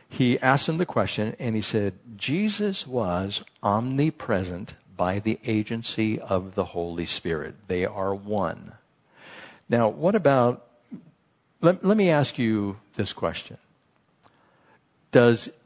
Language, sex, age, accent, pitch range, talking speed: English, male, 60-79, American, 110-175 Hz, 125 wpm